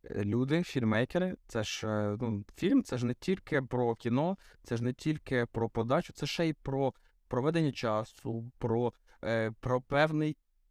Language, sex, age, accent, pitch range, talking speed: Ukrainian, male, 20-39, native, 125-170 Hz, 150 wpm